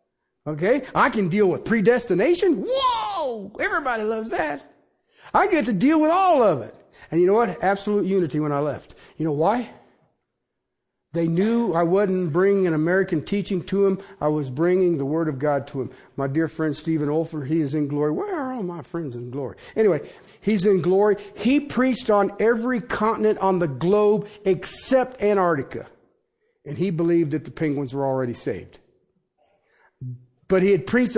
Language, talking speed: English, 175 wpm